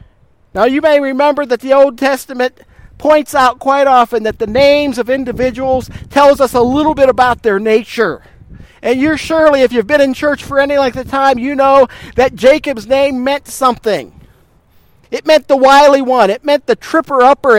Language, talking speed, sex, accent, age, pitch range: English, 185 wpm, male, American, 50-69, 255-305 Hz